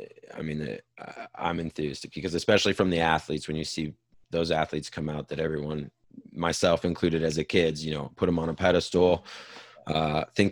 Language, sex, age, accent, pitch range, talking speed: English, male, 30-49, American, 80-95 Hz, 185 wpm